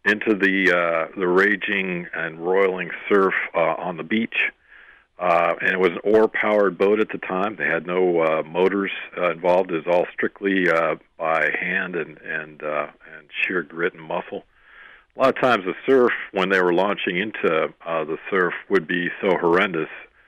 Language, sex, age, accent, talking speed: English, male, 50-69, American, 185 wpm